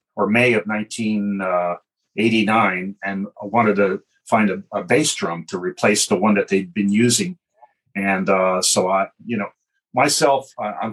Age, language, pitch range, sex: 40-59, English, 95-120 Hz, male